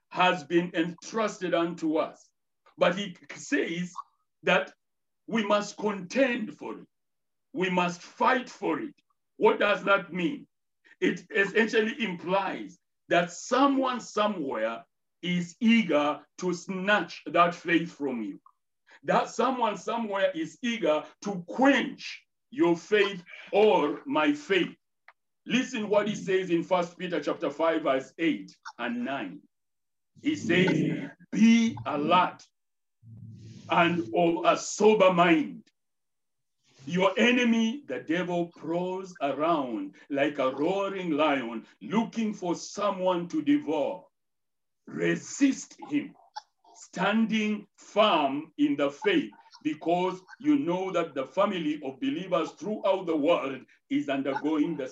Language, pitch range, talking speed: English, 165-240 Hz, 115 wpm